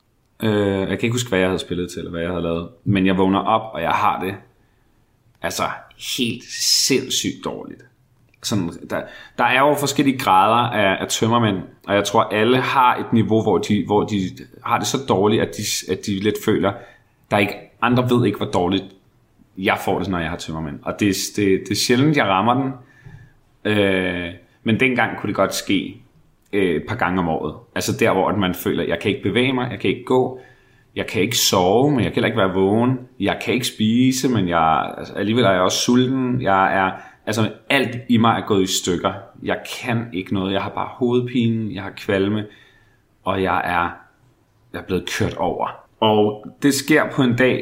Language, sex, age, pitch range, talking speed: Danish, male, 30-49, 95-125 Hz, 210 wpm